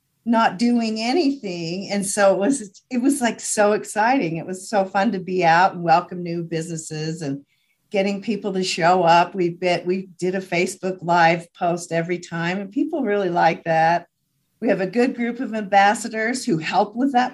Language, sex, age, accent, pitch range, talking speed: English, female, 40-59, American, 170-210 Hz, 185 wpm